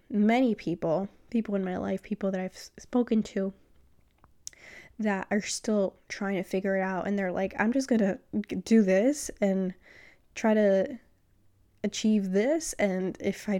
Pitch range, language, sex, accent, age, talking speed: 190-225 Hz, English, female, American, 10-29, 160 wpm